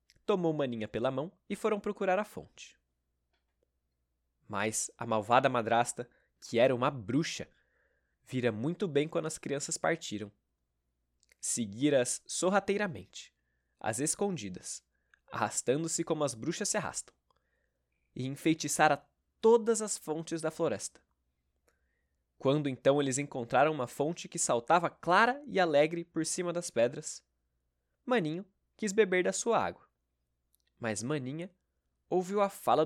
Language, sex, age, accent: Portuguese, male, 20-39, Brazilian